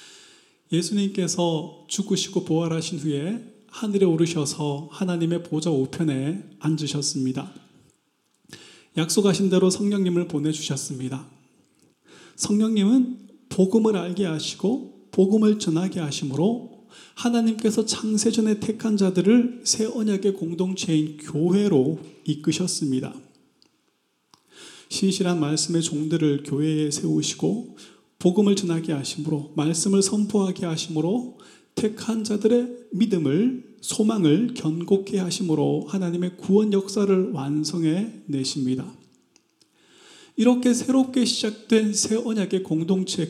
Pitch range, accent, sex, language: 155-215 Hz, native, male, Korean